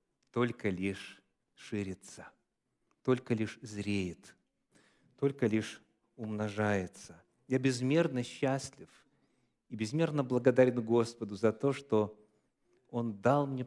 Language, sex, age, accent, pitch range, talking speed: Russian, male, 40-59, native, 100-130 Hz, 95 wpm